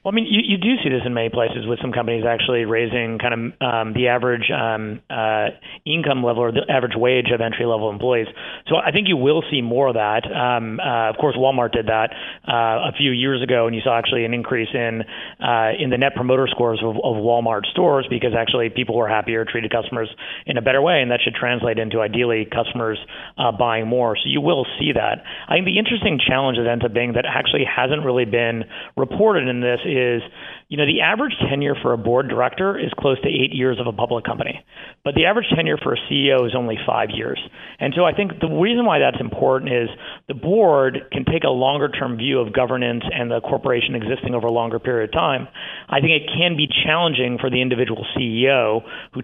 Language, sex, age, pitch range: English, male, 30-49, 115-135 Hz